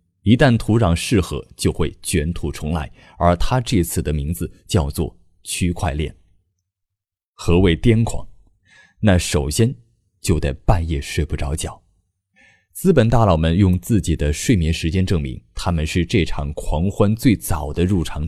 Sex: male